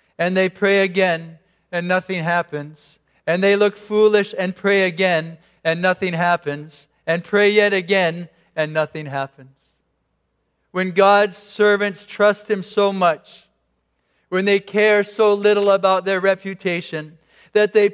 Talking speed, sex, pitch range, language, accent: 135 wpm, male, 200-250 Hz, English, American